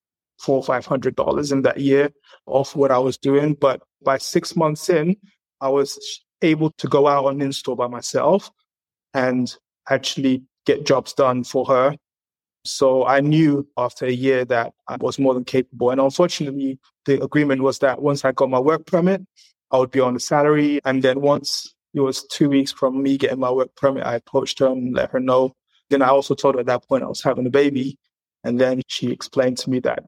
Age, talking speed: 30-49, 205 wpm